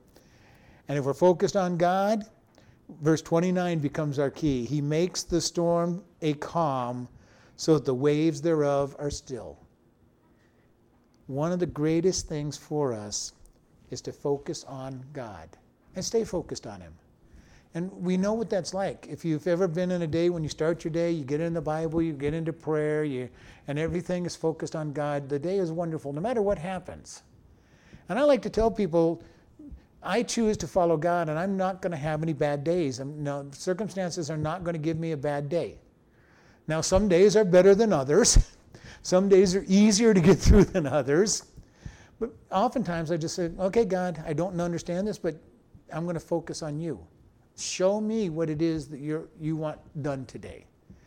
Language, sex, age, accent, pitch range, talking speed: English, male, 60-79, American, 145-180 Hz, 185 wpm